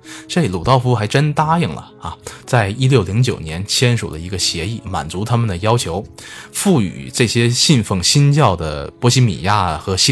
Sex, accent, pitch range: male, native, 95-135 Hz